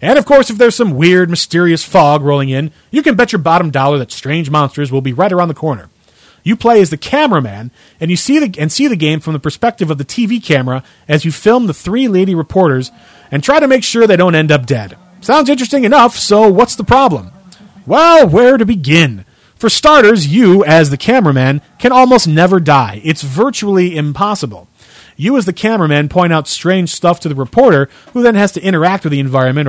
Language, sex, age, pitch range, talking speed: English, male, 30-49, 145-220 Hz, 215 wpm